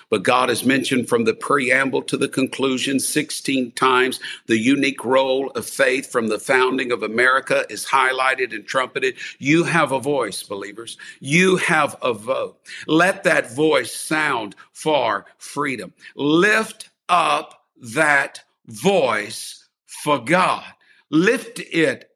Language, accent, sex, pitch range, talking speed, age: English, American, male, 130-210 Hz, 135 wpm, 50-69